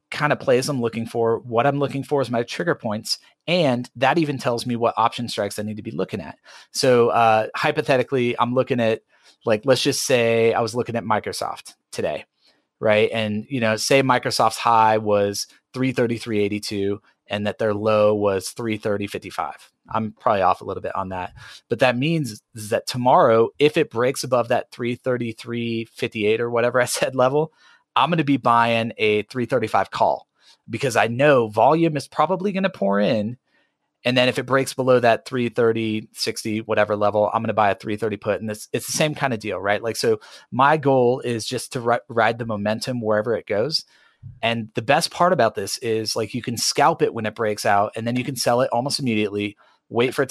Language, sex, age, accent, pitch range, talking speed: English, male, 30-49, American, 110-130 Hz, 200 wpm